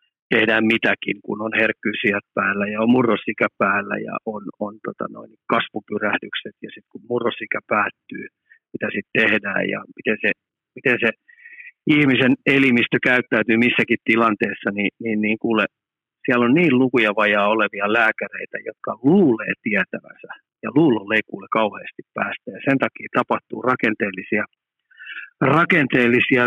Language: Finnish